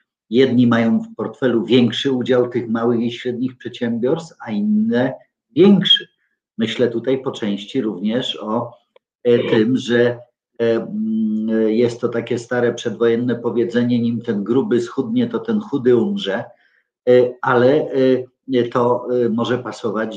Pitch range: 115-140 Hz